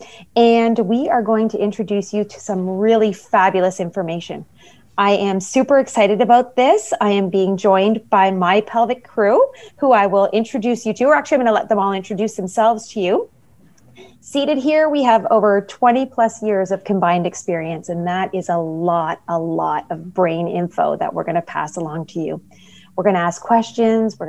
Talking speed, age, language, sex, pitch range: 195 wpm, 30-49, English, female, 180-230 Hz